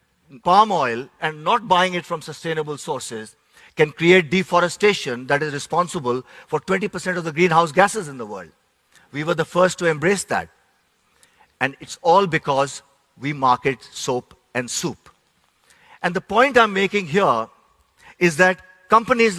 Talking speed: 155 wpm